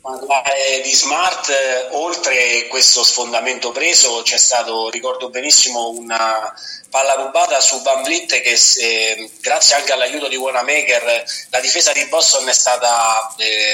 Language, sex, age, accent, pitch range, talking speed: Italian, male, 30-49, native, 115-140 Hz, 130 wpm